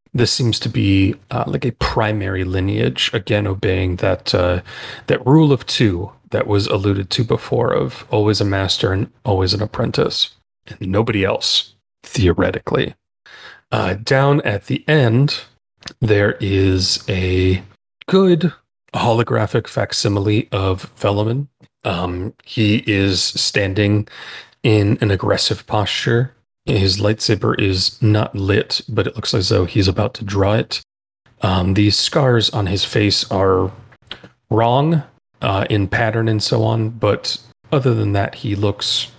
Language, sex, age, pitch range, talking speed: English, male, 30-49, 100-120 Hz, 140 wpm